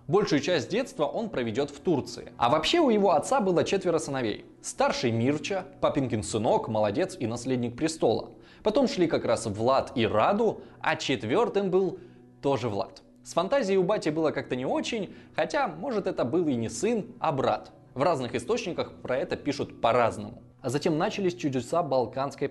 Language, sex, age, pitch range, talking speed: Russian, male, 20-39, 130-185 Hz, 170 wpm